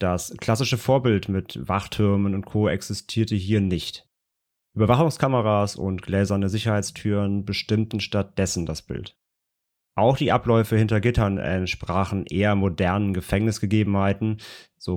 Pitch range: 95-110 Hz